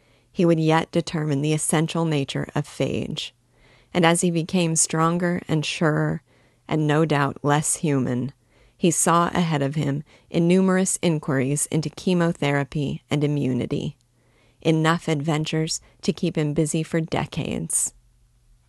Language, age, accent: English, 30-49, American